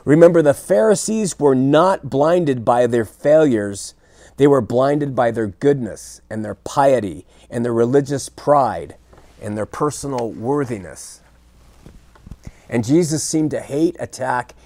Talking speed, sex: 130 wpm, male